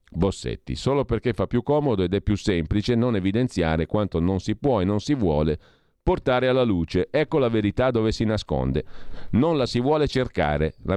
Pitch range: 85-120 Hz